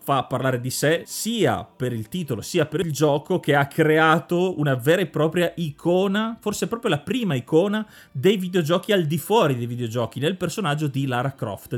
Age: 30-49